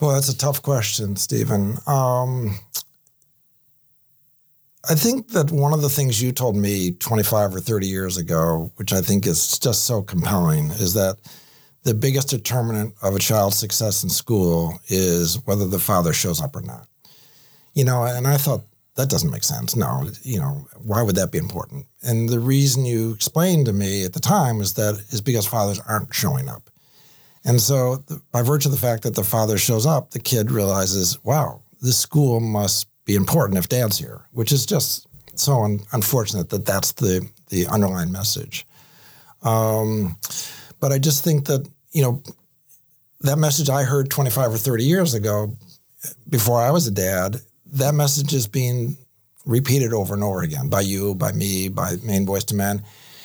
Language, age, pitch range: English, 50-69, 105-140 Hz